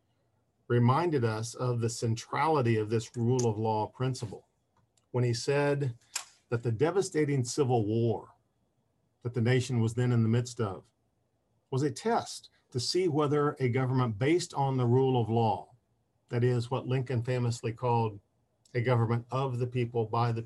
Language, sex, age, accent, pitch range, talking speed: English, male, 50-69, American, 115-130 Hz, 160 wpm